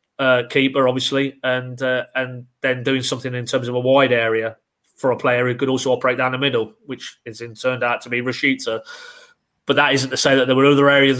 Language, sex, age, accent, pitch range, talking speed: English, male, 30-49, British, 125-140 Hz, 225 wpm